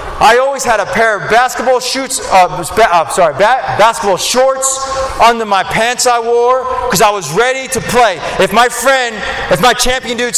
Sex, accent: male, American